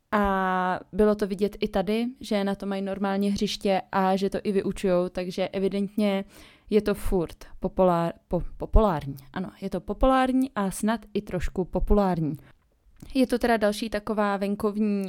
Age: 20-39